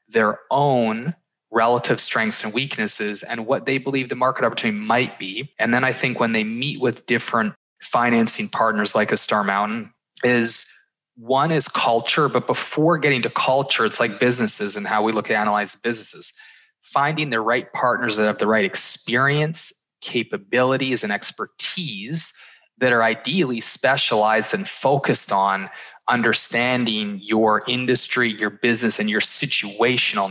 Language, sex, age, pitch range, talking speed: English, male, 20-39, 105-135 Hz, 150 wpm